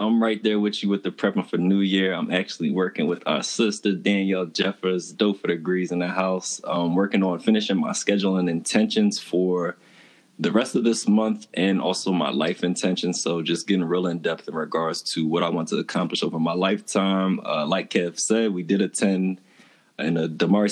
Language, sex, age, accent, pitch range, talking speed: English, male, 20-39, American, 90-105 Hz, 200 wpm